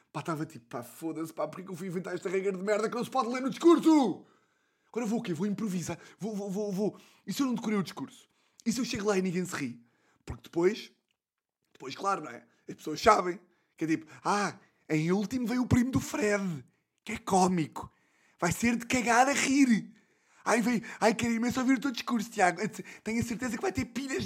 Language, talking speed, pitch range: Portuguese, 235 wpm, 155-215 Hz